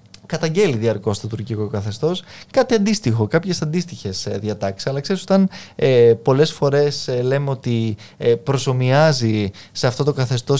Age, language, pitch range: 20-39, Greek, 110-155 Hz